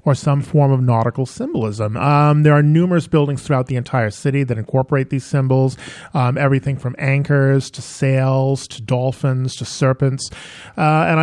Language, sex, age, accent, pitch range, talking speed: English, male, 40-59, American, 125-155 Hz, 165 wpm